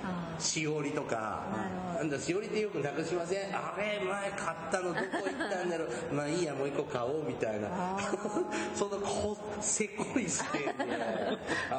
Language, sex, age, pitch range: Japanese, male, 40-59, 145-210 Hz